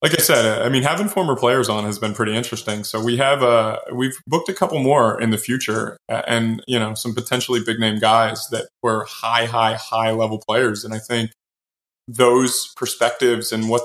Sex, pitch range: male, 105-115 Hz